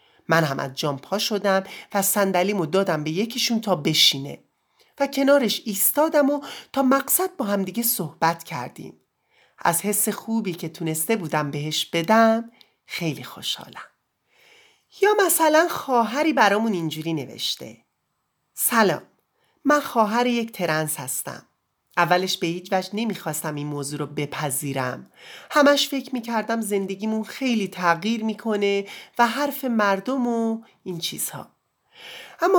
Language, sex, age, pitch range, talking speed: English, male, 30-49, 165-235 Hz, 125 wpm